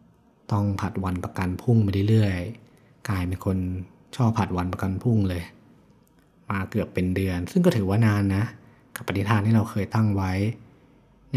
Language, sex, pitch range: Thai, male, 95-110 Hz